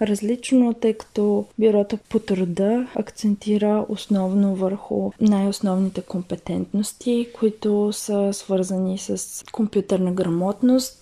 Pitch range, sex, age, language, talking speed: 190-215 Hz, female, 20-39, Bulgarian, 95 wpm